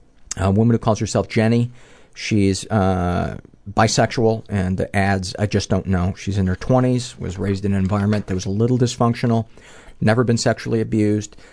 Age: 50-69